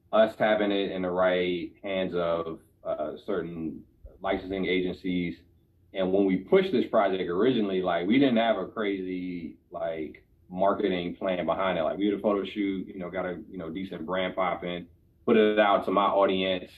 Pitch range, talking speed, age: 85-105 Hz, 180 wpm, 30-49